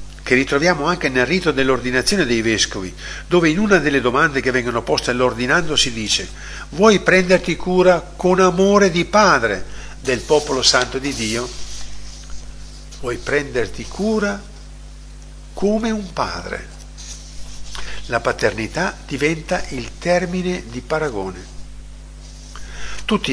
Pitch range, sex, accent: 115-170 Hz, male, native